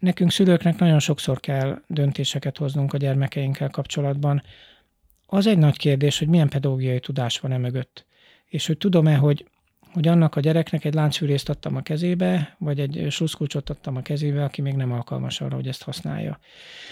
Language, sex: Hungarian, male